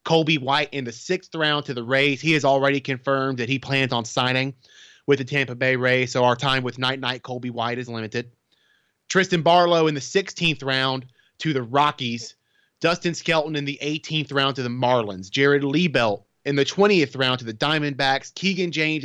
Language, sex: English, male